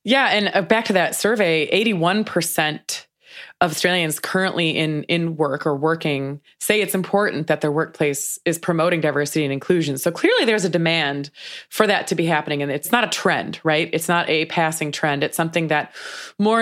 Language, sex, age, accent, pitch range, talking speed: English, female, 20-39, American, 150-185 Hz, 185 wpm